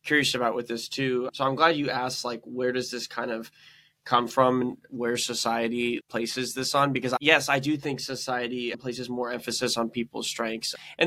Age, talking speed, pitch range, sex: 20-39, 195 wpm, 120-140 Hz, male